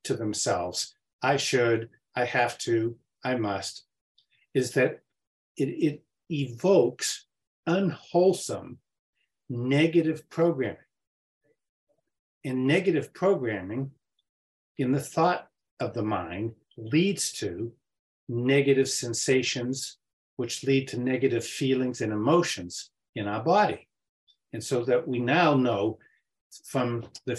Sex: male